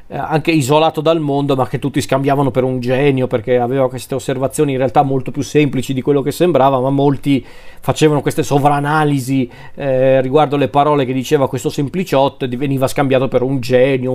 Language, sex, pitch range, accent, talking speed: Italian, male, 135-155 Hz, native, 180 wpm